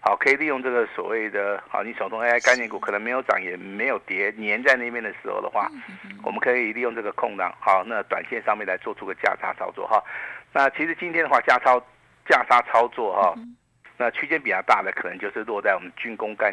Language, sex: Chinese, male